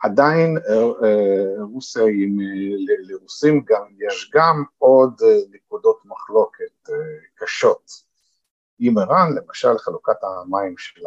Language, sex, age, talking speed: Hebrew, male, 50-69, 90 wpm